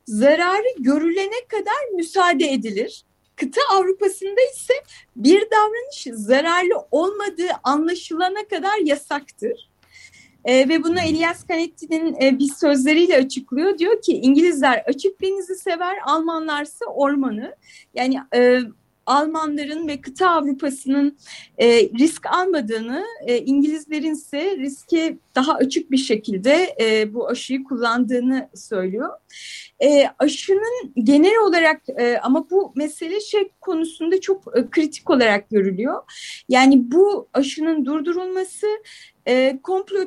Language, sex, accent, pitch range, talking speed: Turkish, female, native, 270-370 Hz, 115 wpm